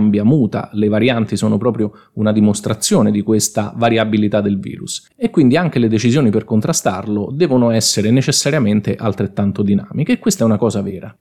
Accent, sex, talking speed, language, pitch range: native, male, 155 wpm, Italian, 105-150 Hz